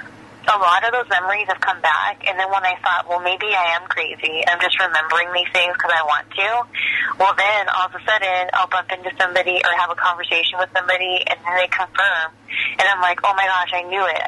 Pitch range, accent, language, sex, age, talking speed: 175-200 Hz, American, English, female, 20-39, 235 wpm